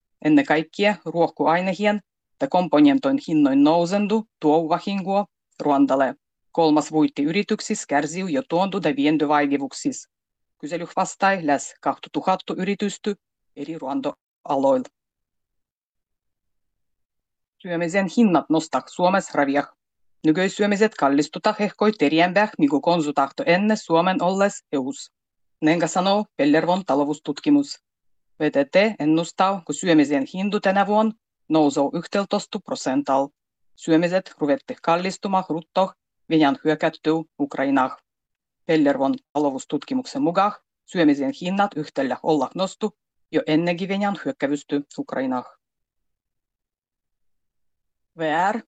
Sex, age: female, 30-49